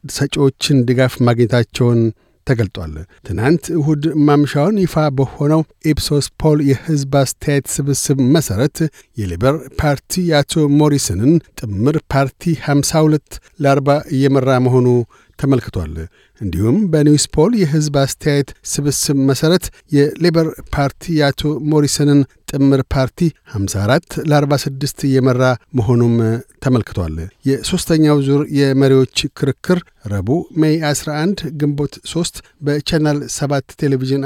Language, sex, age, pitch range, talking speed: Amharic, male, 60-79, 130-155 Hz, 80 wpm